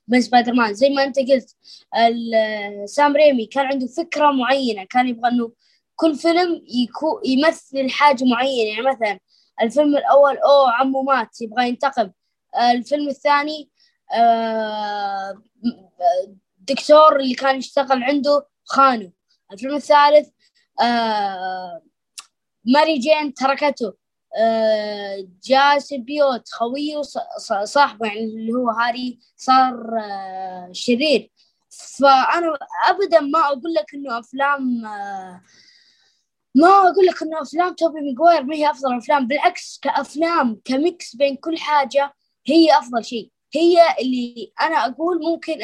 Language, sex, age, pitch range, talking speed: Arabic, female, 20-39, 235-300 Hz, 110 wpm